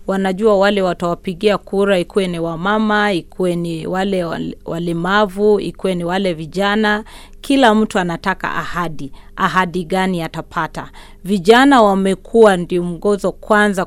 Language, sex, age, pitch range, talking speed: Swahili, female, 30-49, 175-210 Hz, 120 wpm